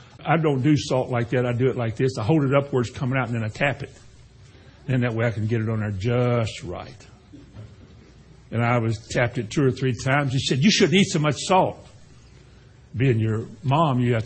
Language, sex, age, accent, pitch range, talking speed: English, male, 60-79, American, 120-150 Hz, 245 wpm